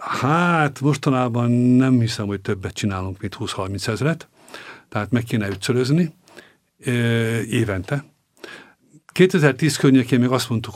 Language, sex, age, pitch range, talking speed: Hungarian, male, 50-69, 100-130 Hz, 110 wpm